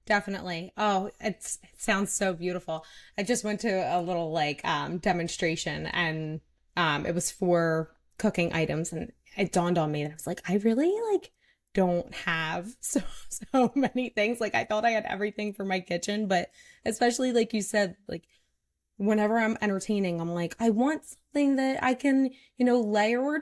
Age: 20-39